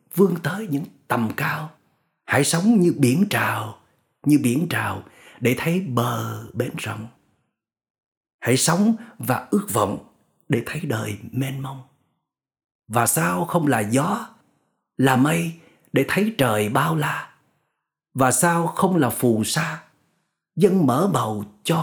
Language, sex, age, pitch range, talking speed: Vietnamese, male, 30-49, 125-180 Hz, 135 wpm